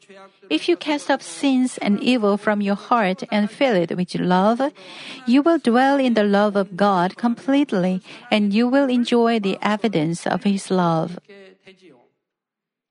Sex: female